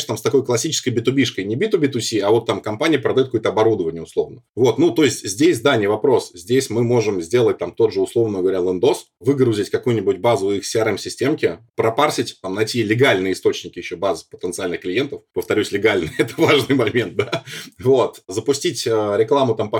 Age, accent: 20-39, native